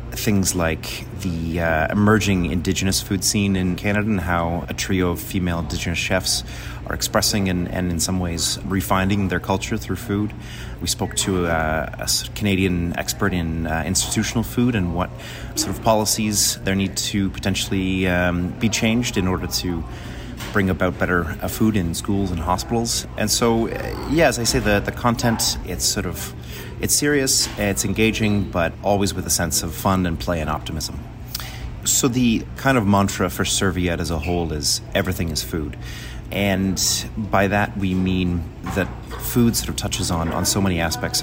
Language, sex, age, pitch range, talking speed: English, male, 30-49, 90-110 Hz, 175 wpm